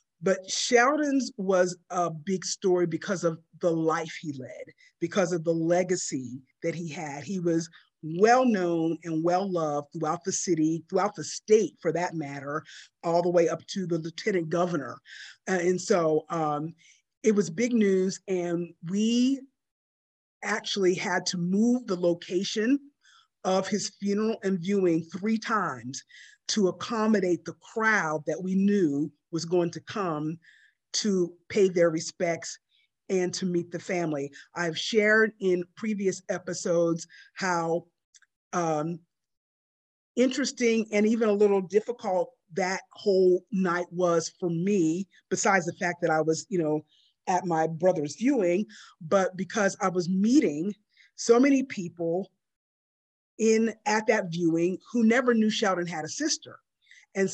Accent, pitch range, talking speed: American, 165-205 Hz, 140 wpm